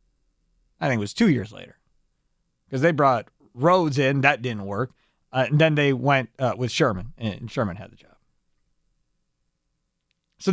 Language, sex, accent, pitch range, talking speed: English, male, American, 140-205 Hz, 165 wpm